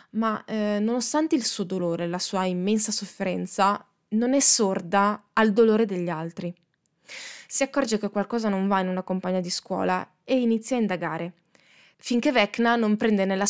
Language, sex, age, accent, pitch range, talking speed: Italian, female, 20-39, native, 185-230 Hz, 170 wpm